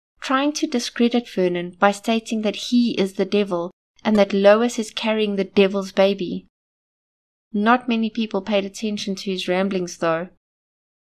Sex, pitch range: female, 190-230 Hz